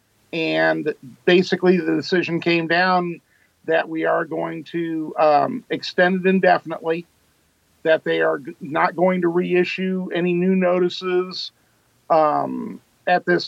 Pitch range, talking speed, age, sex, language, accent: 150-175 Hz, 125 wpm, 50-69, male, English, American